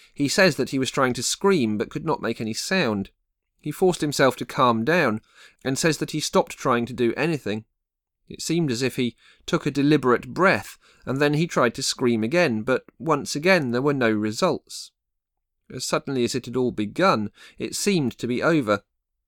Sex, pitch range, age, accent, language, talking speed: male, 105-150 Hz, 40-59, British, English, 200 wpm